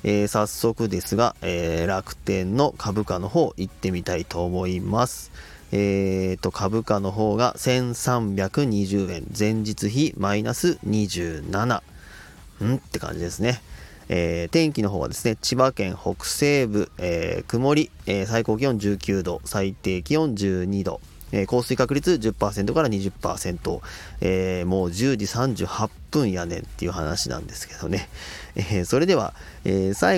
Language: Japanese